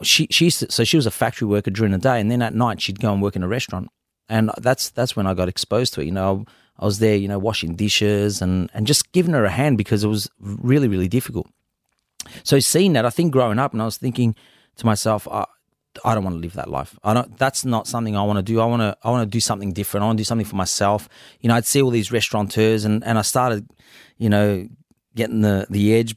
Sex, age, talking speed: male, 30-49, 270 wpm